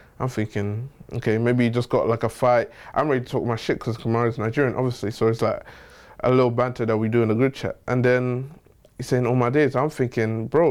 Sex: male